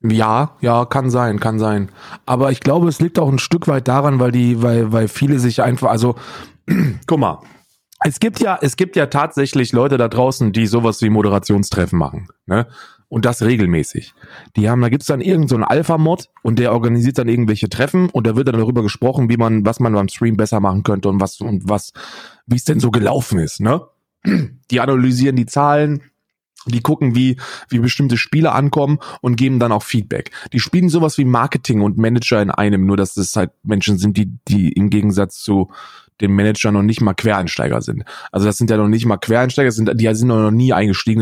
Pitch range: 105-125 Hz